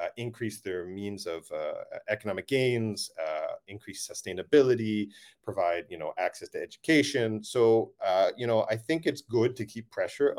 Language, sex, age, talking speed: English, male, 40-59, 160 wpm